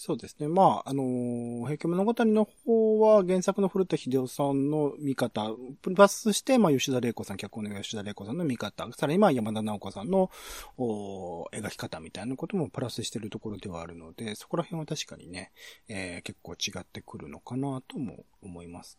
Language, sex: Japanese, male